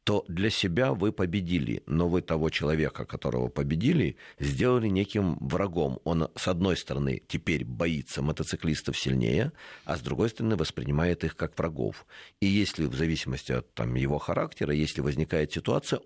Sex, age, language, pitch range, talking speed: male, 50-69, Russian, 80-110 Hz, 155 wpm